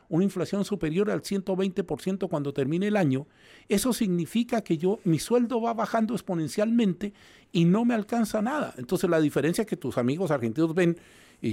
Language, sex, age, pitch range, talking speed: Spanish, male, 50-69, 120-180 Hz, 165 wpm